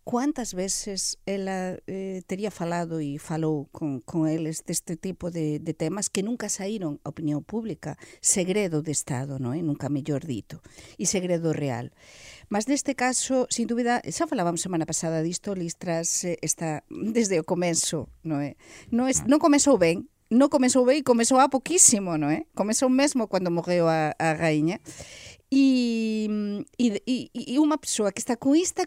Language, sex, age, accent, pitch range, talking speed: Portuguese, female, 50-69, Spanish, 165-265 Hz, 165 wpm